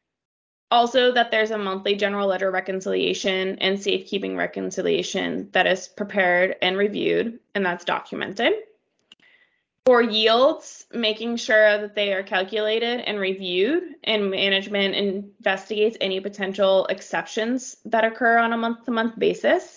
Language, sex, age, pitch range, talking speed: English, female, 20-39, 195-245 Hz, 130 wpm